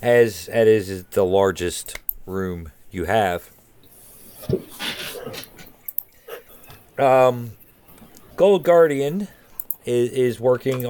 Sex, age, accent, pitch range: male, 40-59, American, 105-125 Hz